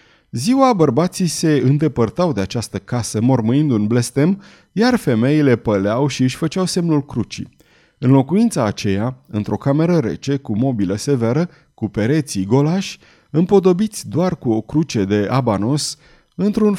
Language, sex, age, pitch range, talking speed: Romanian, male, 30-49, 110-160 Hz, 135 wpm